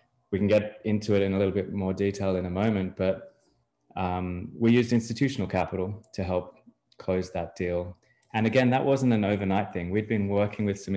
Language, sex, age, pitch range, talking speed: English, male, 20-39, 95-115 Hz, 200 wpm